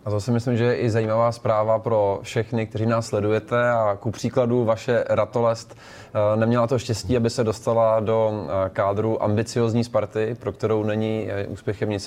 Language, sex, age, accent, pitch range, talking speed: Czech, male, 20-39, native, 105-115 Hz, 170 wpm